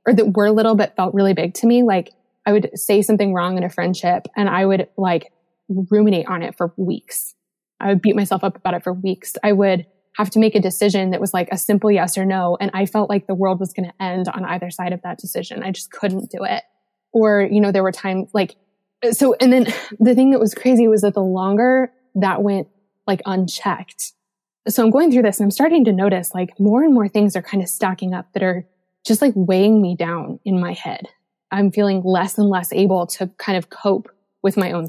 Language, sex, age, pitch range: English, female, 20-39, 185-215 Hz